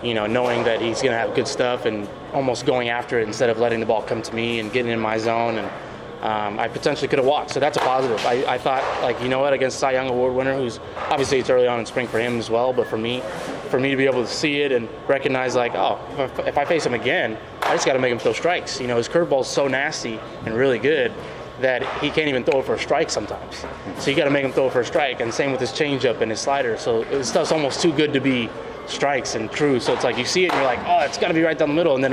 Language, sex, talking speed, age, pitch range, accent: English, male, 295 wpm, 20-39, 115-155 Hz, American